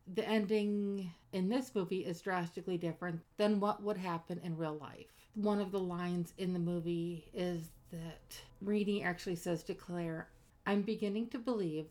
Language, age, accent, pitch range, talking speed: English, 50-69, American, 170-205 Hz, 165 wpm